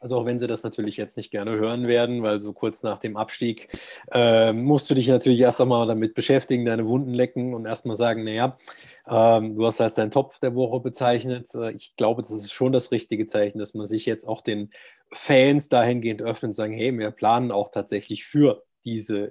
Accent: German